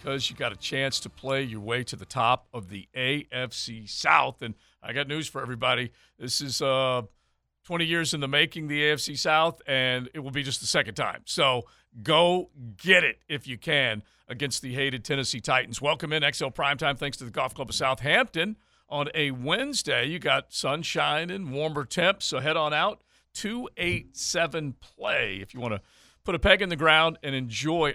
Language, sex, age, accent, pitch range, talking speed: English, male, 50-69, American, 125-155 Hz, 195 wpm